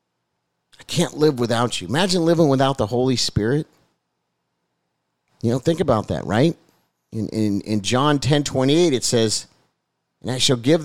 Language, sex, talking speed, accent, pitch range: English, male, 155 wpm, American, 140-210 Hz